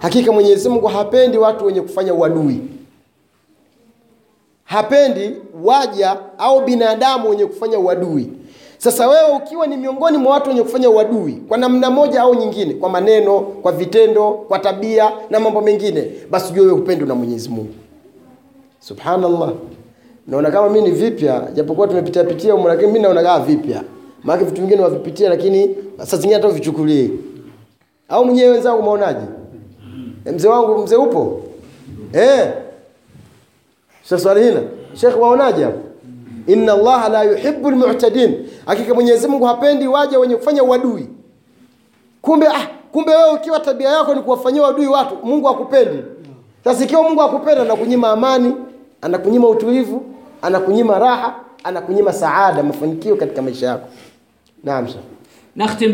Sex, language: male, Swahili